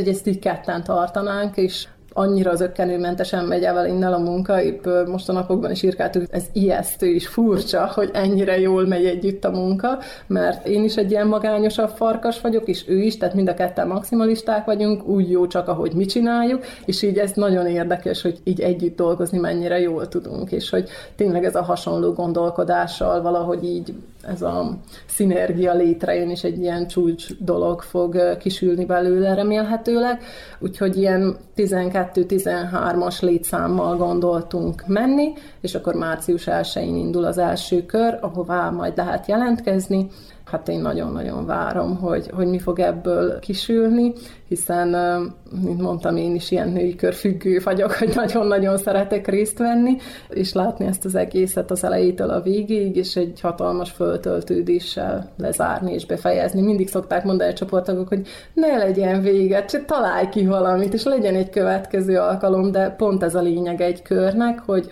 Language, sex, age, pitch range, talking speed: Hungarian, female, 30-49, 175-205 Hz, 155 wpm